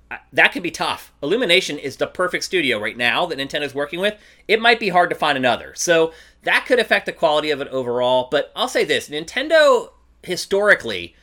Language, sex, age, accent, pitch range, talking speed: English, male, 30-49, American, 135-205 Hz, 200 wpm